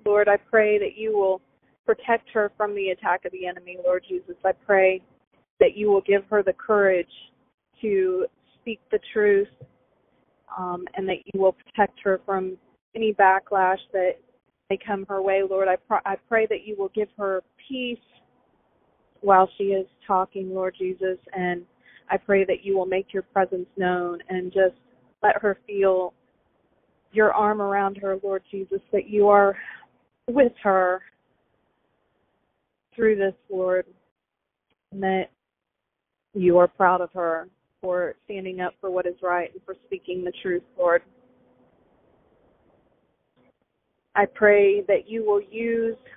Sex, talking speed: female, 150 wpm